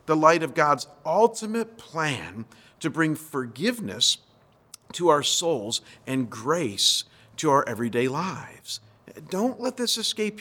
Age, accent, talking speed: 50-69, American, 125 wpm